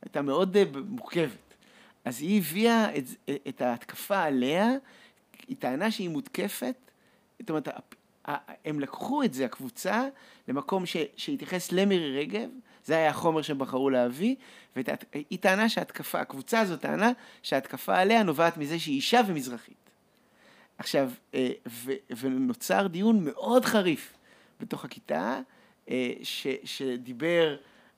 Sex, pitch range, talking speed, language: male, 135-225 Hz, 120 wpm, Hebrew